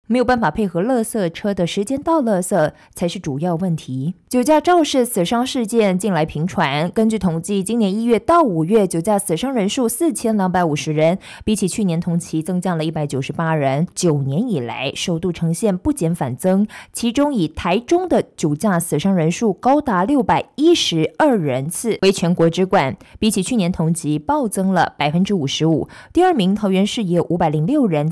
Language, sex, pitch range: Chinese, female, 165-230 Hz